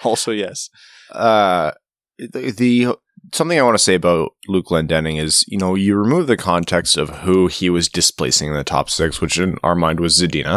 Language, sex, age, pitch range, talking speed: English, male, 20-39, 85-100 Hz, 200 wpm